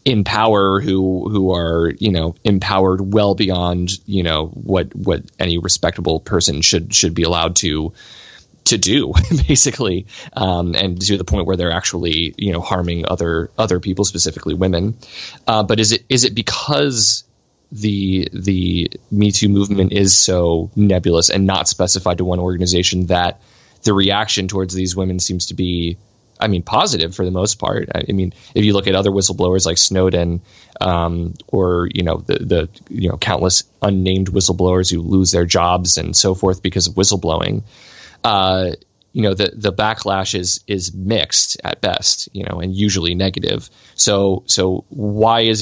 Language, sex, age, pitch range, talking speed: English, male, 20-39, 90-100 Hz, 170 wpm